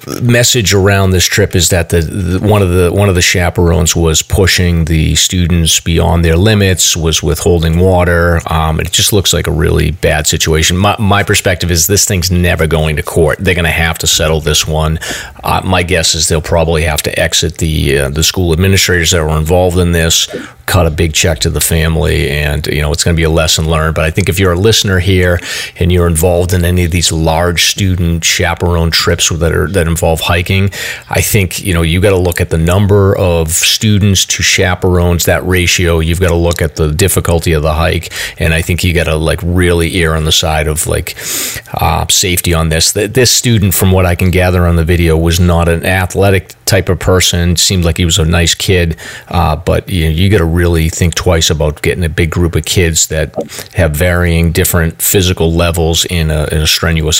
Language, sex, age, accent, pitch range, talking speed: English, male, 30-49, American, 80-95 Hz, 220 wpm